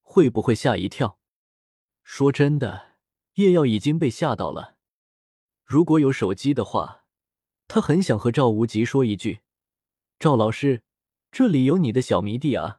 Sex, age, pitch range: male, 20-39, 115-185 Hz